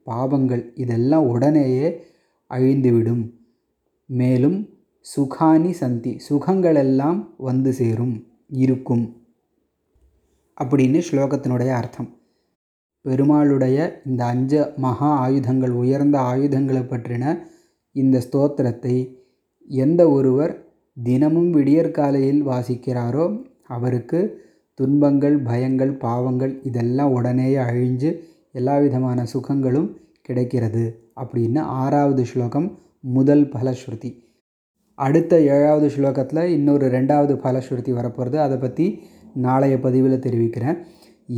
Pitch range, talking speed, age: 125-145 Hz, 85 wpm, 20-39